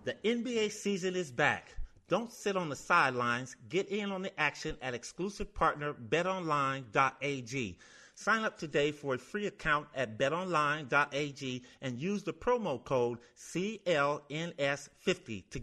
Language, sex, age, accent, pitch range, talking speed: English, male, 30-49, American, 140-190 Hz, 135 wpm